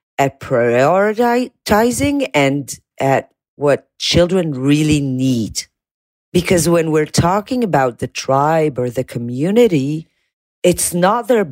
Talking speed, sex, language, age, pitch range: 110 wpm, female, English, 40-59, 130-170 Hz